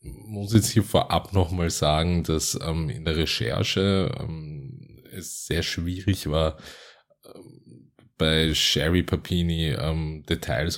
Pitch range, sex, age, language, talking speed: 85-95 Hz, male, 20-39, German, 135 wpm